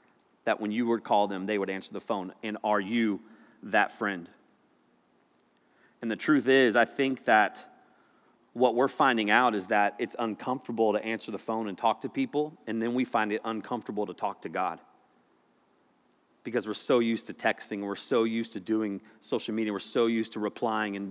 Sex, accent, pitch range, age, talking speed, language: male, American, 105-130 Hz, 30-49, 195 wpm, English